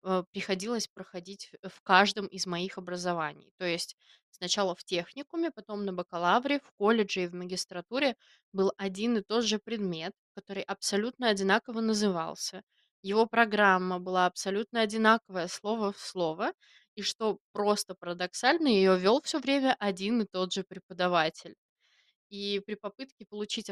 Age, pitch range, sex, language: 20-39, 185-225 Hz, female, Russian